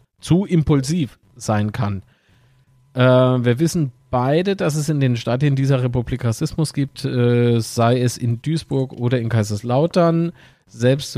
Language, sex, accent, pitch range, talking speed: German, male, German, 120-150 Hz, 130 wpm